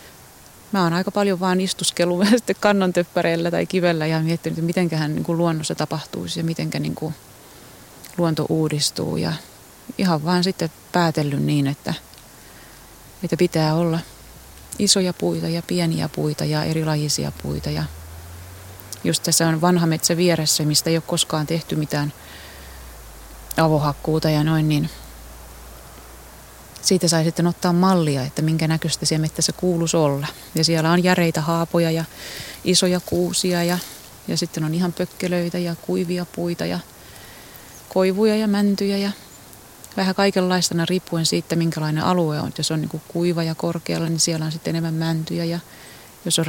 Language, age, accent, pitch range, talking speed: Finnish, 30-49, native, 150-175 Hz, 145 wpm